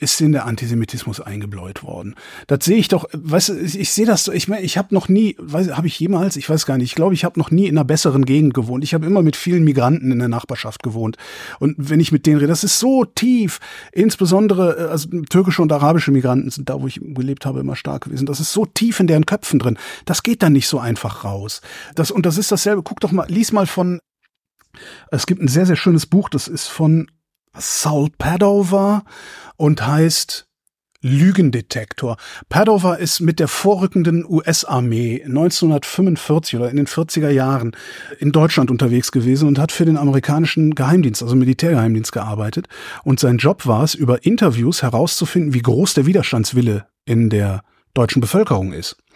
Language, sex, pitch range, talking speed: German, male, 130-180 Hz, 195 wpm